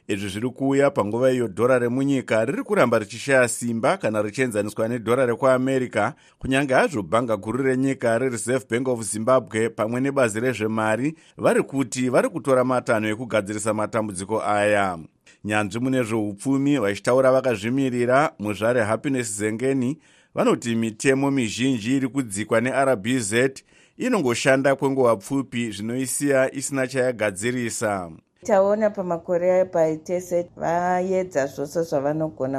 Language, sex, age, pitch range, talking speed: English, male, 50-69, 120-150 Hz, 125 wpm